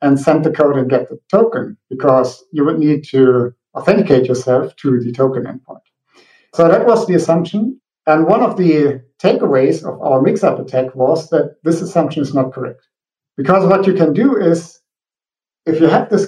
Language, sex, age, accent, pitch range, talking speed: English, male, 50-69, German, 135-185 Hz, 185 wpm